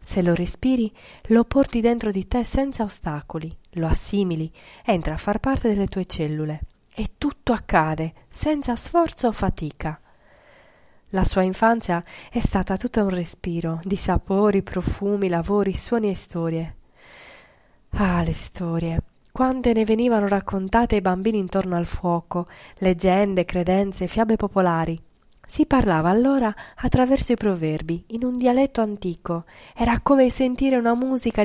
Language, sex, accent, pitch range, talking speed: Italian, female, native, 175-235 Hz, 135 wpm